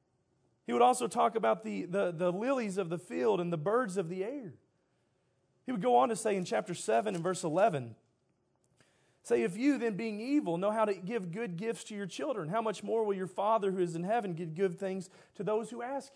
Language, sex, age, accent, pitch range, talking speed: English, male, 30-49, American, 175-235 Hz, 225 wpm